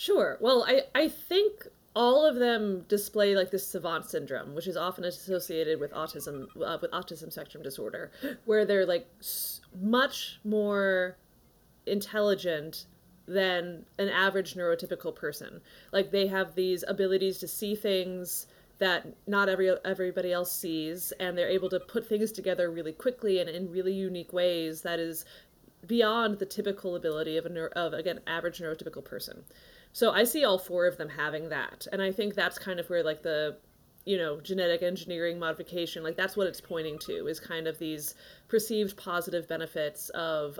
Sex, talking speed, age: female, 170 wpm, 20-39